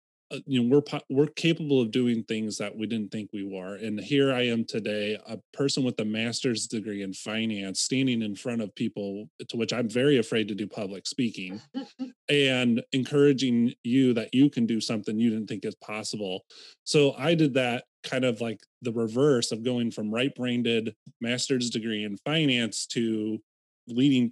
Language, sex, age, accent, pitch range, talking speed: English, male, 30-49, American, 110-140 Hz, 185 wpm